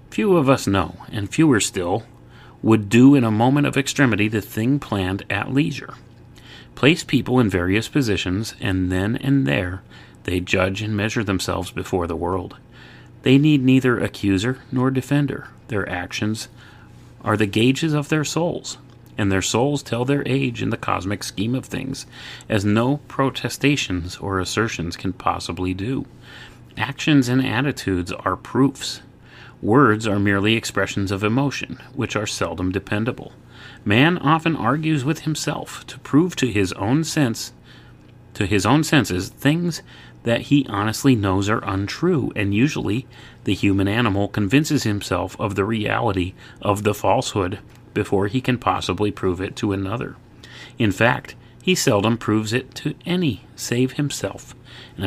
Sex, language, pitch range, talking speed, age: male, English, 100-135 Hz, 150 wpm, 30-49